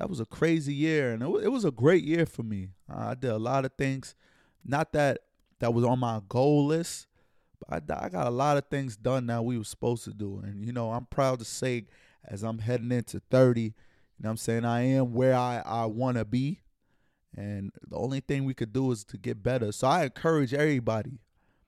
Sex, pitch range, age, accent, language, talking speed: male, 110-135 Hz, 20-39, American, English, 225 wpm